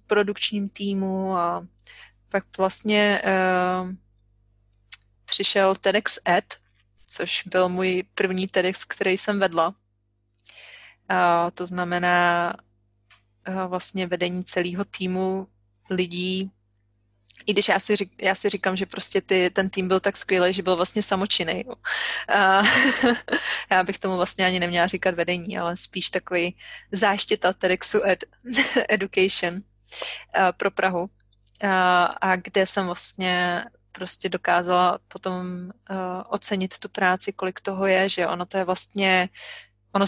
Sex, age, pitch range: female, 20-39, 175-195 Hz